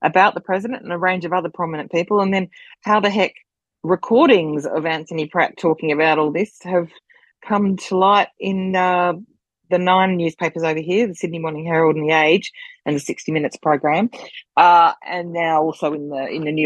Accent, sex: Australian, female